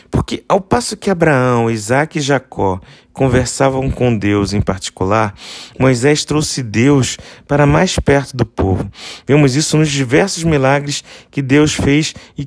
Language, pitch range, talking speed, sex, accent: Portuguese, 115-145 Hz, 145 wpm, male, Brazilian